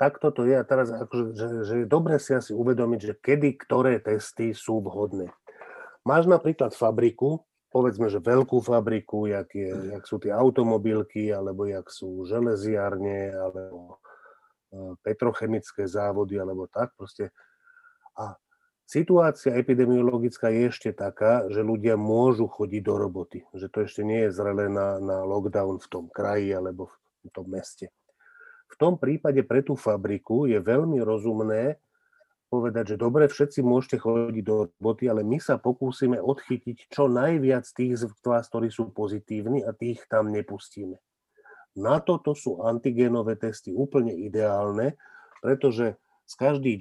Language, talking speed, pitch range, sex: Slovak, 145 wpm, 105-130 Hz, male